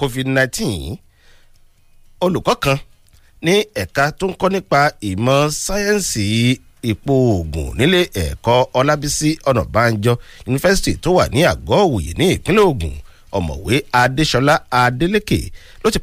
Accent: Nigerian